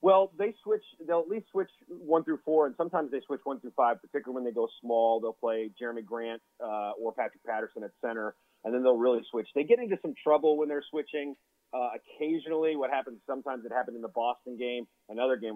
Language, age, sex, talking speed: English, 30-49, male, 225 wpm